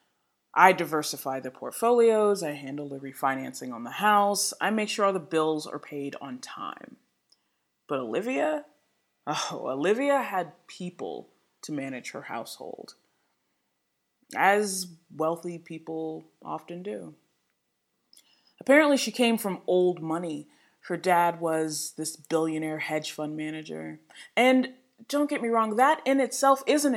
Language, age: English, 20-39